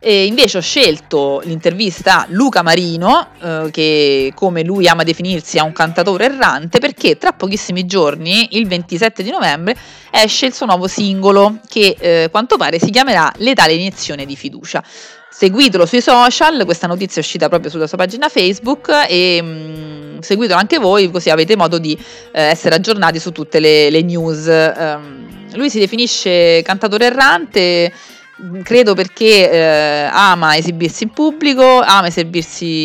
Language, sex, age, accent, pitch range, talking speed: Italian, female, 30-49, native, 160-210 Hz, 150 wpm